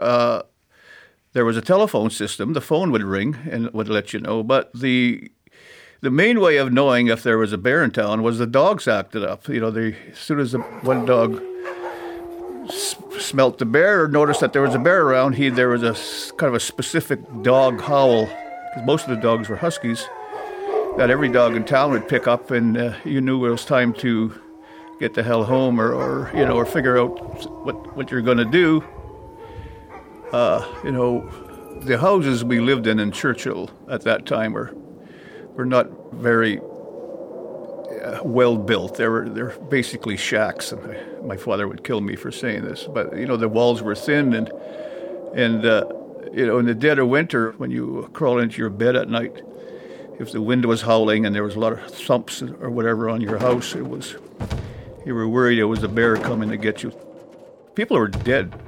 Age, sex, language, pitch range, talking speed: 60-79, male, English, 115-135 Hz, 200 wpm